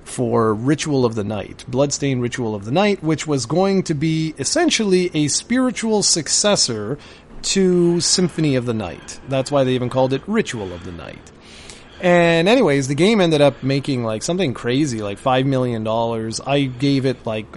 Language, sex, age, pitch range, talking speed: English, male, 30-49, 125-175 Hz, 180 wpm